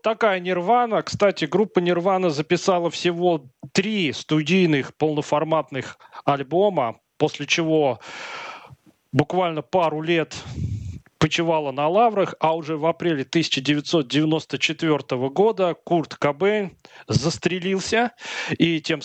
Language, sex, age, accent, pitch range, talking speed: Russian, male, 30-49, native, 145-180 Hz, 95 wpm